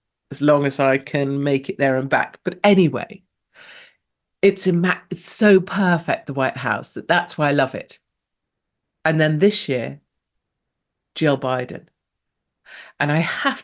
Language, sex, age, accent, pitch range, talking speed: English, female, 50-69, British, 150-200 Hz, 150 wpm